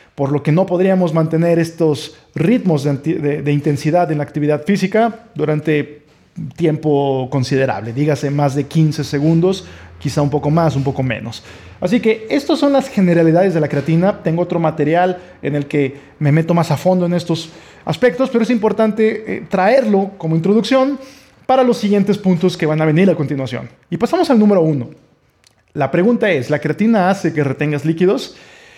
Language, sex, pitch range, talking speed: Spanish, male, 145-195 Hz, 175 wpm